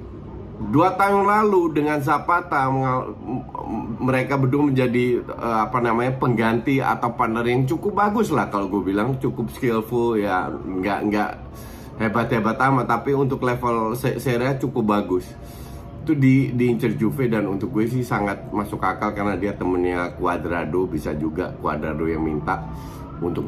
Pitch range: 90-130 Hz